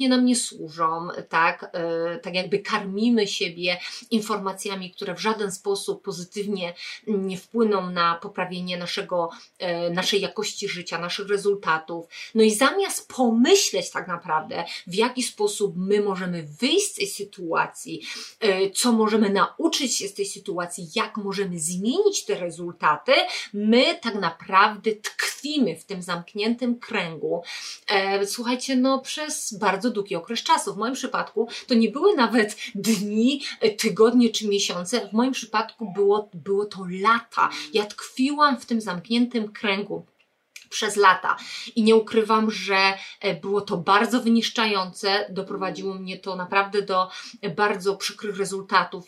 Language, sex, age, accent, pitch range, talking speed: Polish, female, 30-49, native, 185-230 Hz, 130 wpm